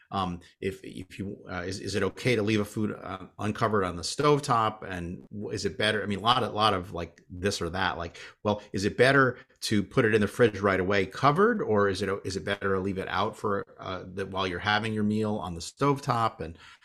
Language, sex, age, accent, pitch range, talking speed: English, male, 30-49, American, 85-105 Hz, 245 wpm